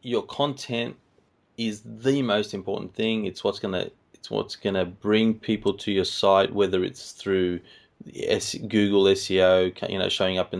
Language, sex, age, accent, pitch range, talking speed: English, male, 20-39, Australian, 95-110 Hz, 160 wpm